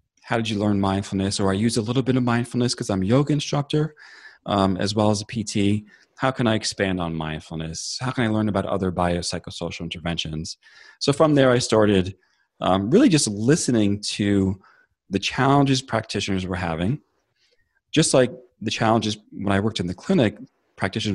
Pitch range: 95-120 Hz